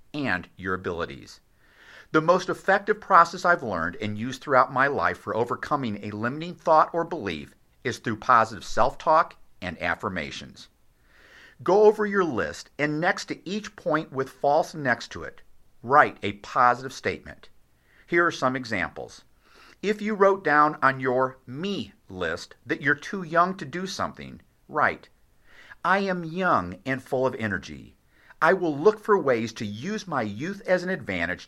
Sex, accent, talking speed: male, American, 160 wpm